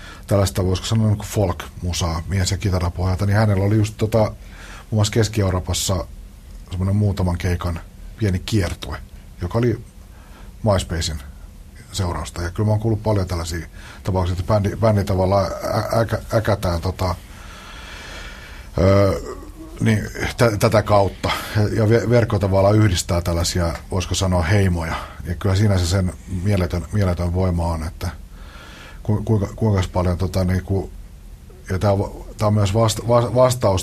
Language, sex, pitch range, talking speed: Finnish, male, 90-105 Hz, 120 wpm